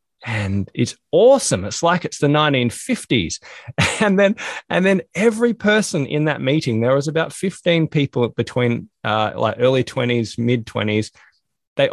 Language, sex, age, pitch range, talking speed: English, male, 20-39, 105-140 Hz, 150 wpm